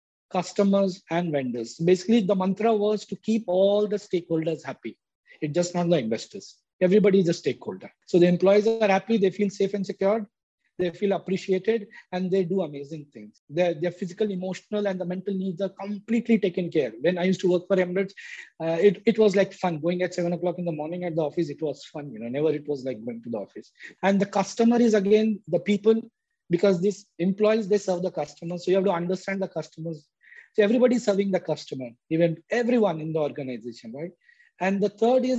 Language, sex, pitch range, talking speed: English, male, 170-205 Hz, 210 wpm